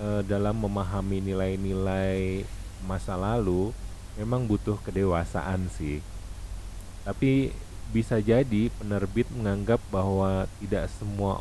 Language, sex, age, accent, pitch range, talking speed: Indonesian, male, 30-49, native, 90-115 Hz, 90 wpm